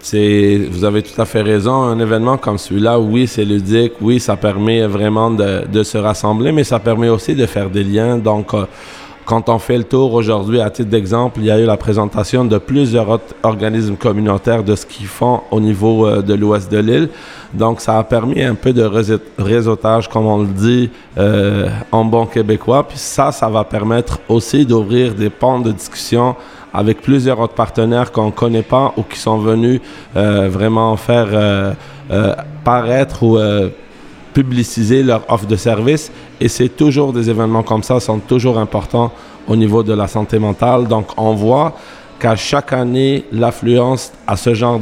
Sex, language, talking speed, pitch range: male, French, 185 wpm, 105-120 Hz